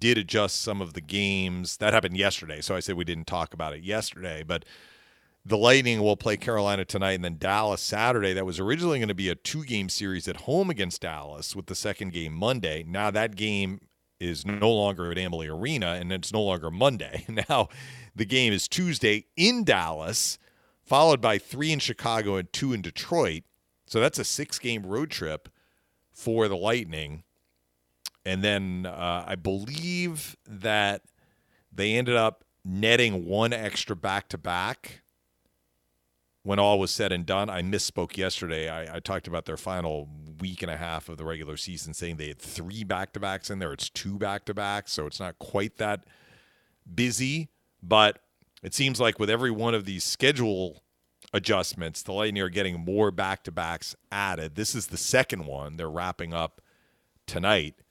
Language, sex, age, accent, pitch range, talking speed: English, male, 40-59, American, 85-110 Hz, 170 wpm